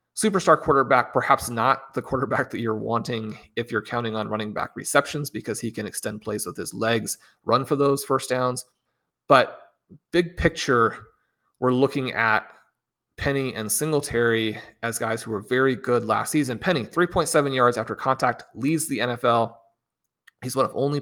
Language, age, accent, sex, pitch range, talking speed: English, 30-49, American, male, 115-140 Hz, 165 wpm